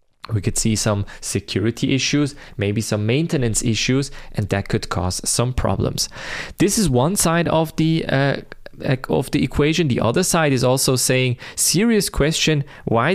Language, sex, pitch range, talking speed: English, male, 110-140 Hz, 160 wpm